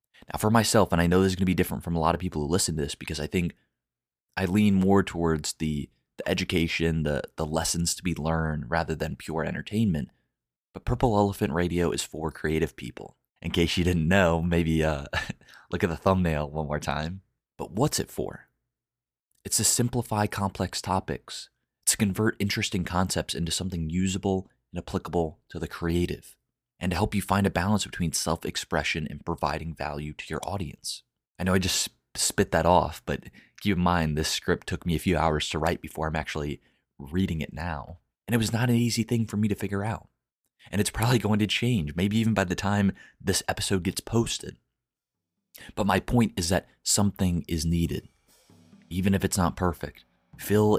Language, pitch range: English, 80-100 Hz